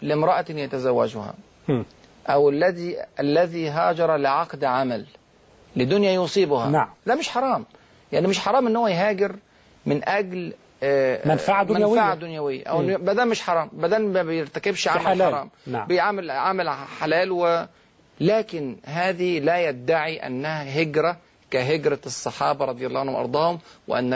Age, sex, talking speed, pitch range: 40-59, male, 120 wpm, 145-195 Hz